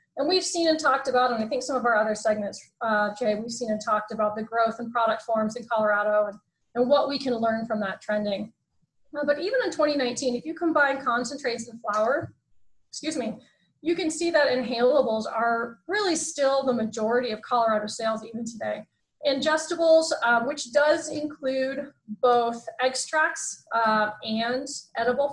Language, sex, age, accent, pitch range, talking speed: English, female, 20-39, American, 215-280 Hz, 180 wpm